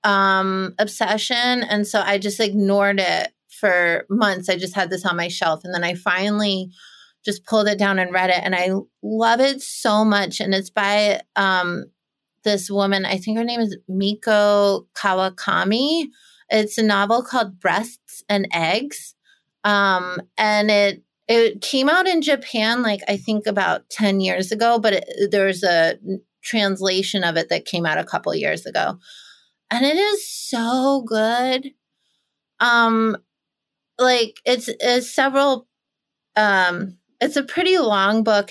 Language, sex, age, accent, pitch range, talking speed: English, female, 30-49, American, 185-220 Hz, 155 wpm